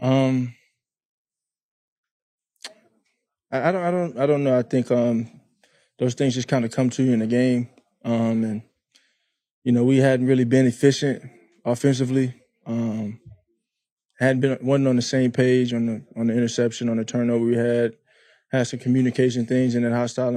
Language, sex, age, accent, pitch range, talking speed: English, male, 20-39, American, 115-125 Hz, 170 wpm